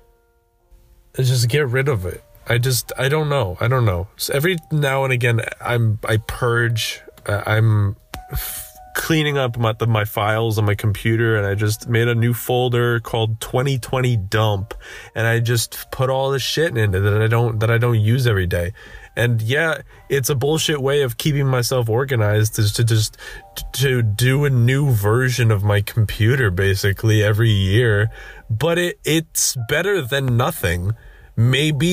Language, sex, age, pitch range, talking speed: English, male, 20-39, 110-130 Hz, 170 wpm